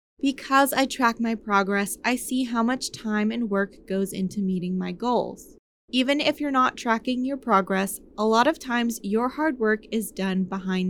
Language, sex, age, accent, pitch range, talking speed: English, female, 20-39, American, 205-265 Hz, 185 wpm